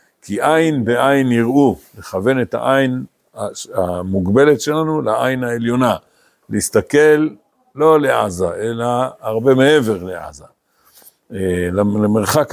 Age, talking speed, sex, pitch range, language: 50-69, 90 wpm, male, 115-165 Hz, Hebrew